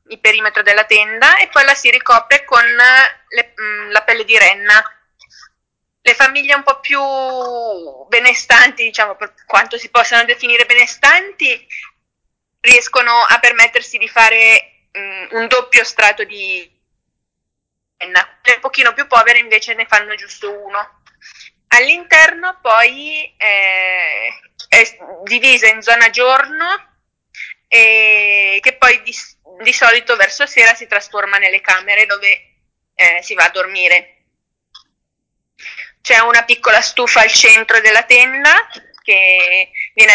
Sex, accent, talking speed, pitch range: female, native, 125 wpm, 210-250 Hz